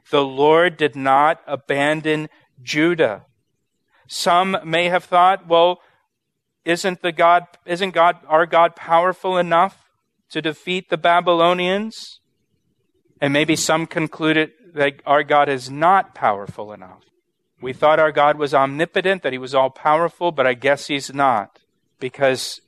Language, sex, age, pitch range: English, male, 40-59, 140-175 Hz